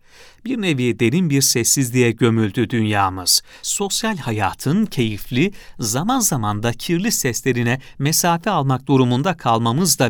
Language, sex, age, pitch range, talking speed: Turkish, male, 40-59, 115-165 Hz, 115 wpm